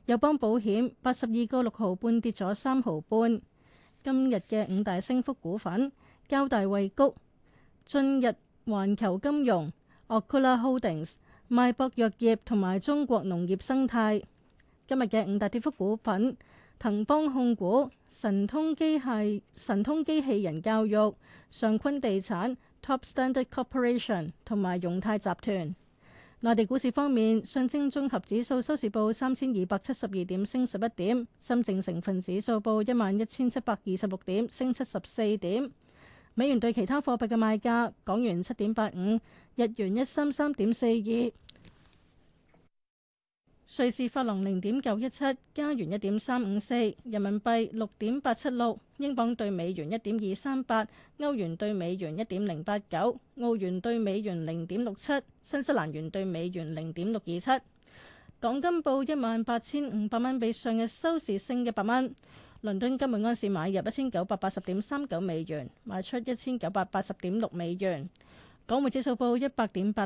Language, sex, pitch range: Chinese, female, 200-255 Hz